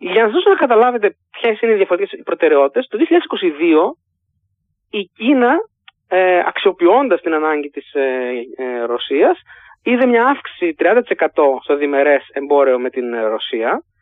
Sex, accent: male, native